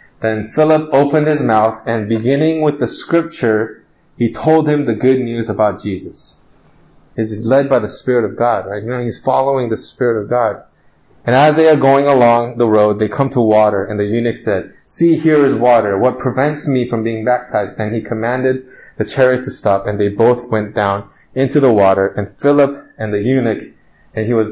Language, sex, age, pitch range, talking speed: English, male, 20-39, 110-150 Hz, 205 wpm